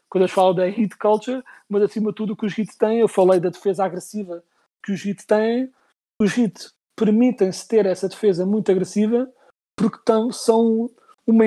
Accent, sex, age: Portuguese, male, 40-59